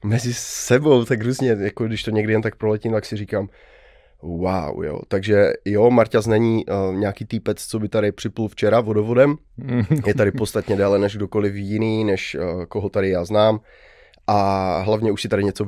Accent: native